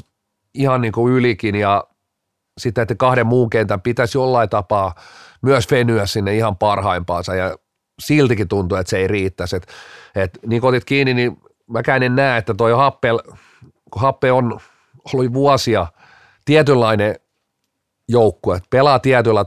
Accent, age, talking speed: native, 40-59, 140 wpm